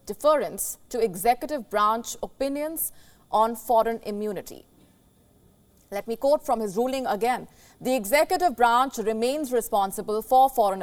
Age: 30-49